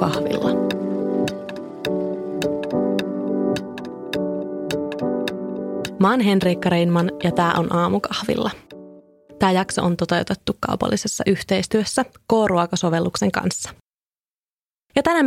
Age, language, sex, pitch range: 20-39, Finnish, female, 175-220 Hz